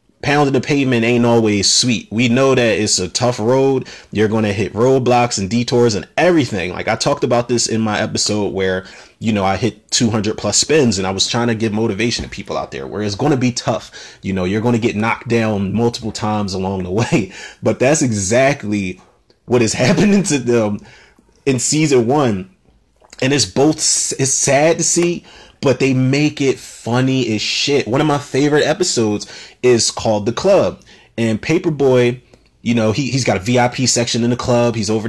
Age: 30-49